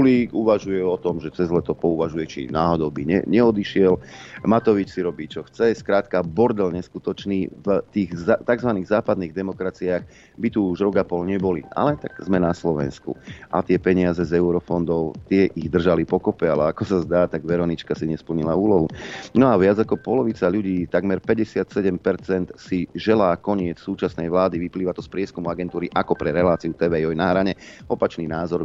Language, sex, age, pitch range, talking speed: Slovak, male, 40-59, 85-110 Hz, 175 wpm